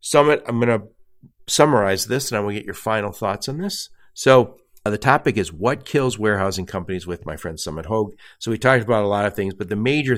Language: English